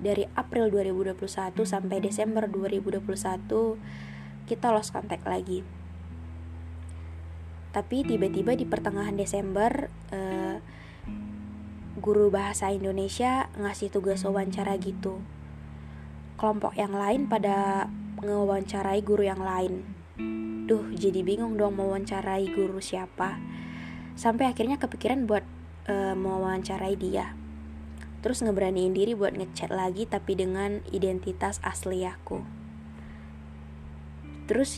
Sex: female